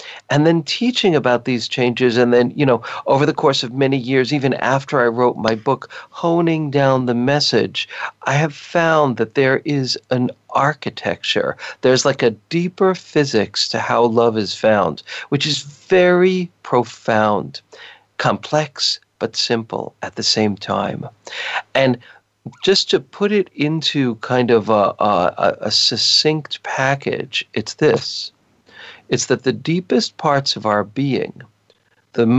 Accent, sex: American, male